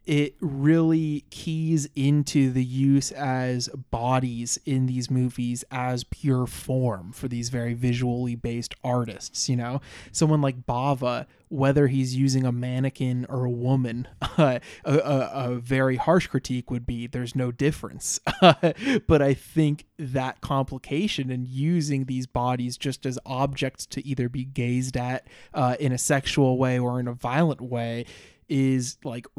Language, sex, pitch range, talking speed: English, male, 125-140 Hz, 150 wpm